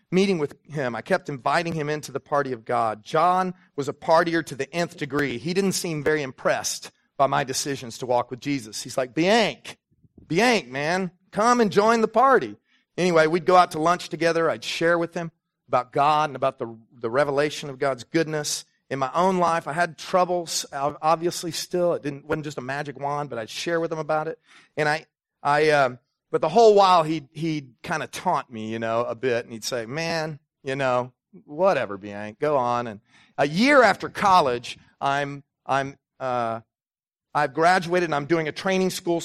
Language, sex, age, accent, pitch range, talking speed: English, male, 40-59, American, 135-175 Hz, 200 wpm